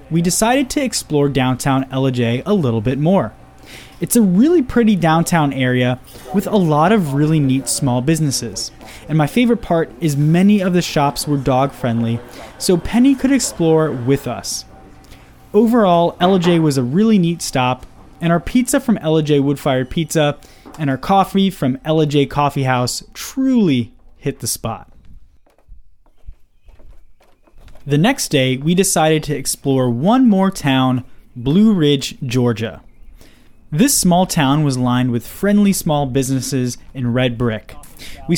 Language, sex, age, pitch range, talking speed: English, male, 20-39, 130-185 Hz, 145 wpm